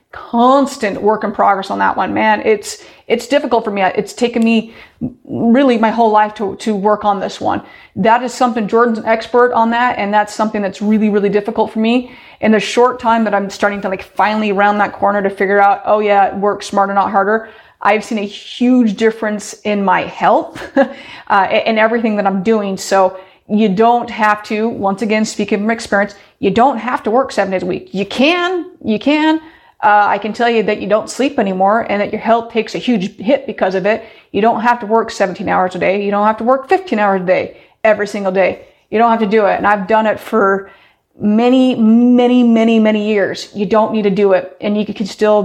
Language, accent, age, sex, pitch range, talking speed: English, American, 30-49, female, 200-230 Hz, 225 wpm